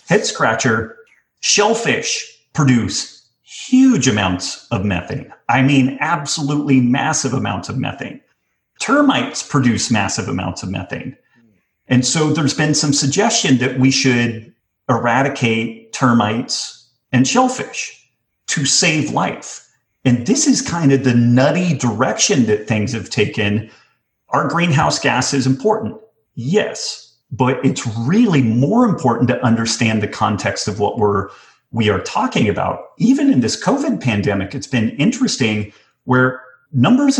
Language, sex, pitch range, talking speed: English, male, 115-150 Hz, 125 wpm